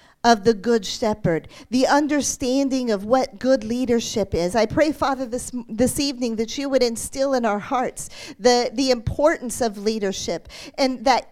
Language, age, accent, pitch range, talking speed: English, 40-59, American, 250-310 Hz, 165 wpm